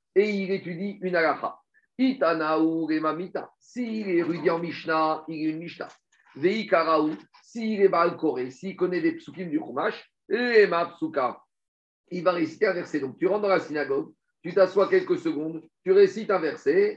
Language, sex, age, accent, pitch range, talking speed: French, male, 50-69, French, 165-210 Hz, 185 wpm